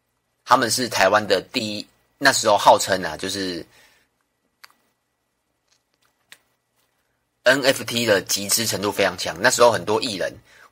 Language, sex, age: Chinese, male, 30-49